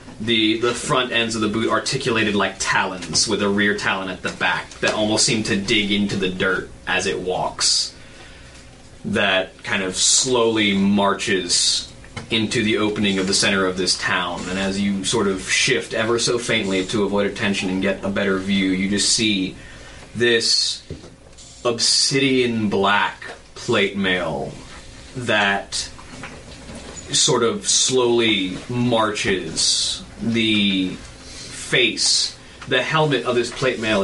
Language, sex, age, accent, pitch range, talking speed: English, male, 20-39, American, 95-115 Hz, 140 wpm